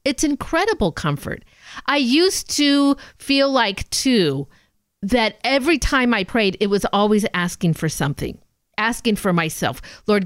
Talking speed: 140 wpm